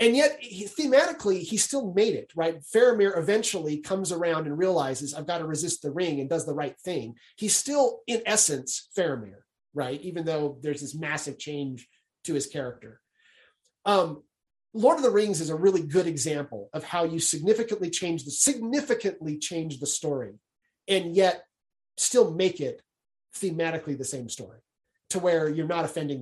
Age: 30-49